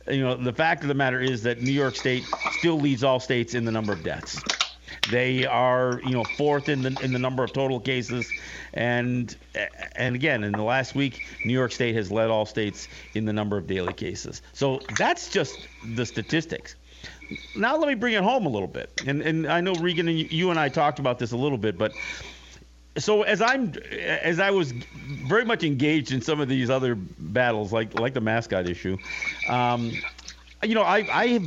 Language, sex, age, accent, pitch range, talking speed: English, male, 50-69, American, 110-150 Hz, 210 wpm